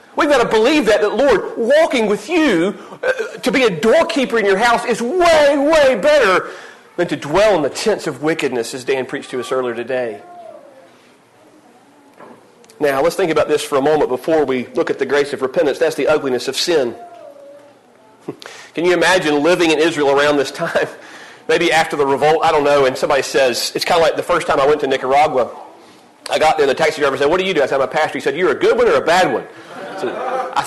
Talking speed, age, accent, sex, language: 225 wpm, 40-59, American, male, English